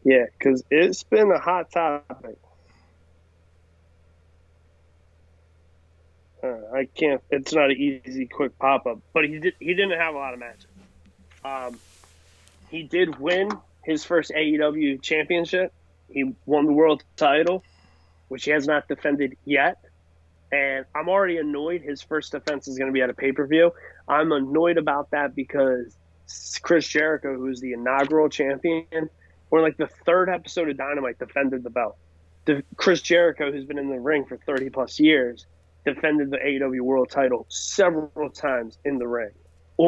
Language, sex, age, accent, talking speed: English, male, 20-39, American, 150 wpm